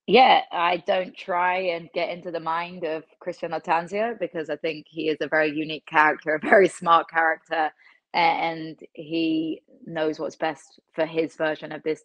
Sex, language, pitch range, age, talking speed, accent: female, English, 155-170 Hz, 20-39, 175 wpm, British